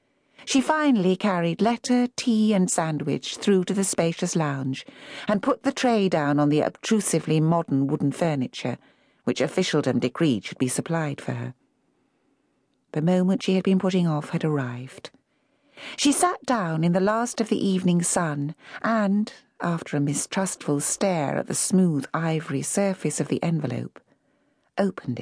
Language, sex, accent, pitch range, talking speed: English, female, British, 145-220 Hz, 150 wpm